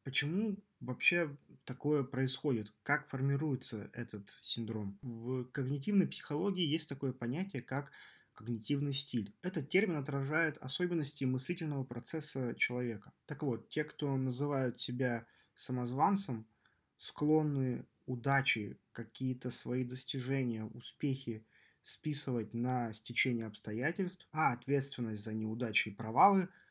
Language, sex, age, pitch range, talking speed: Russian, male, 20-39, 120-145 Hz, 105 wpm